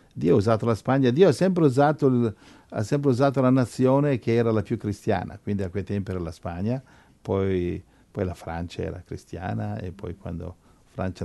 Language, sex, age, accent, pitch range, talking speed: Italian, male, 50-69, native, 90-110 Hz, 195 wpm